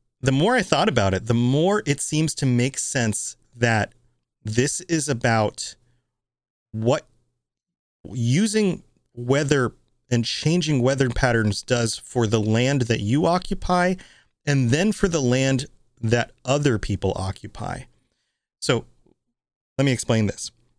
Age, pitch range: 30-49, 110-145 Hz